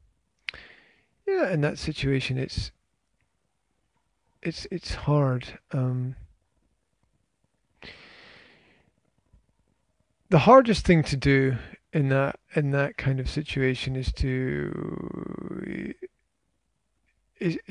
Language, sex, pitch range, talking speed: English, male, 125-155 Hz, 80 wpm